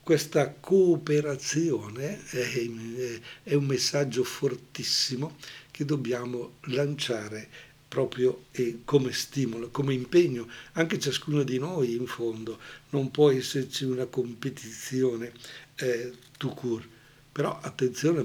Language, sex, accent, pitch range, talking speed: Italian, male, native, 120-145 Hz, 105 wpm